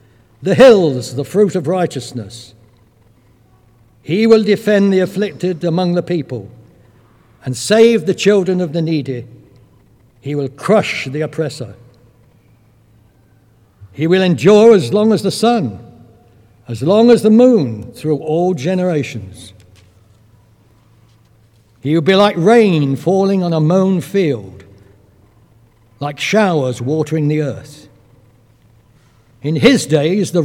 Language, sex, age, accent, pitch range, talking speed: English, male, 60-79, British, 115-185 Hz, 120 wpm